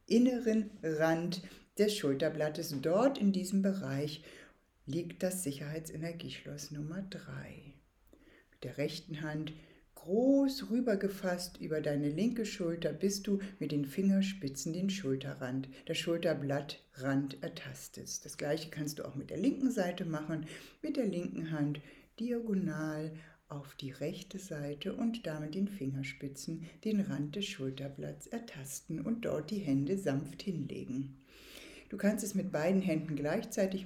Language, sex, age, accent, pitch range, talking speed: German, female, 60-79, German, 145-195 Hz, 130 wpm